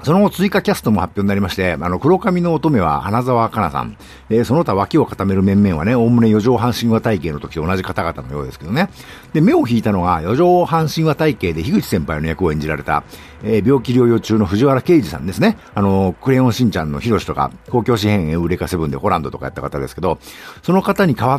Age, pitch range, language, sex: 50-69, 90-150 Hz, Japanese, male